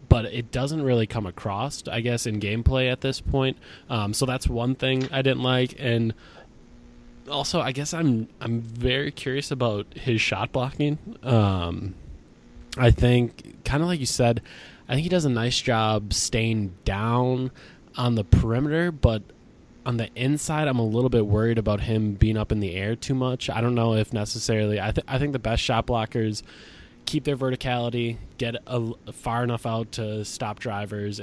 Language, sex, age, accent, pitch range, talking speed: English, male, 20-39, American, 105-125 Hz, 185 wpm